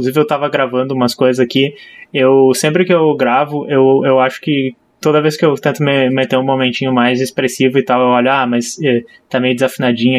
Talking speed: 205 wpm